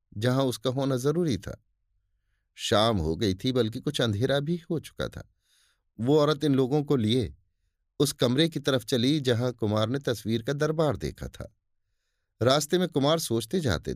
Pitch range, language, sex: 95-135 Hz, Hindi, male